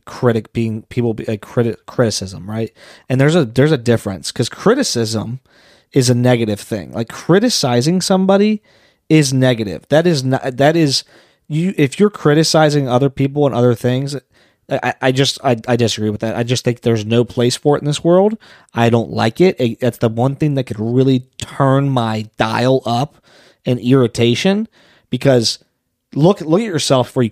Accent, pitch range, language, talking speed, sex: American, 115-150 Hz, English, 180 wpm, male